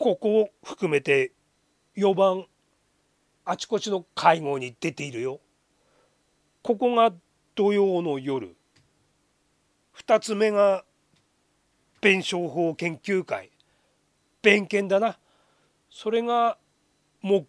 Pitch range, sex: 165-230 Hz, male